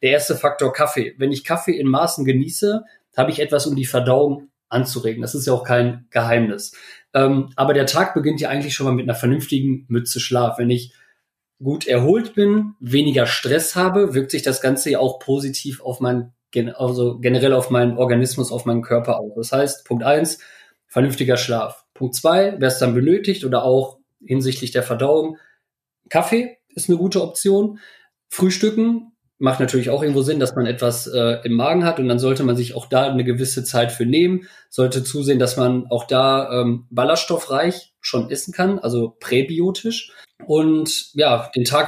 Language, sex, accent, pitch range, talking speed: German, male, German, 125-155 Hz, 180 wpm